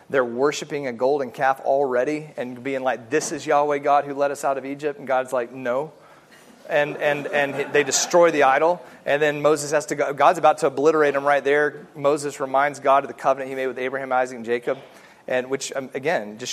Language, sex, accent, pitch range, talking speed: English, male, American, 135-160 Hz, 220 wpm